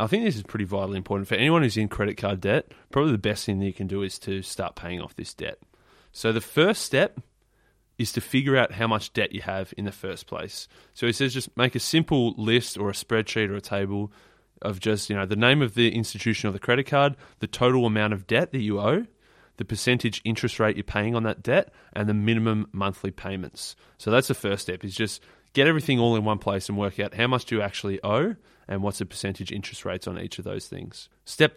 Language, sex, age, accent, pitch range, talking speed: English, male, 20-39, Australian, 100-120 Hz, 245 wpm